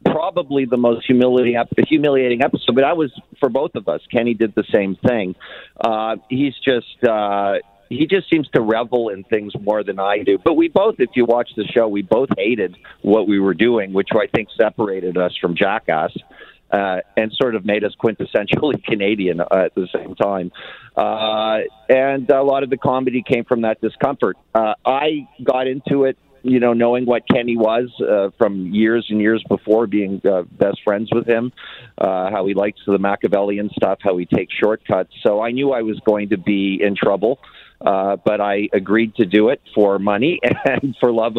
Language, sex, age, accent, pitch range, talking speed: English, male, 50-69, American, 100-125 Hz, 195 wpm